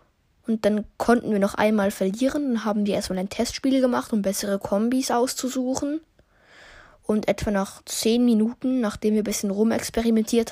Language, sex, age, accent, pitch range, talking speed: German, female, 20-39, German, 195-240 Hz, 160 wpm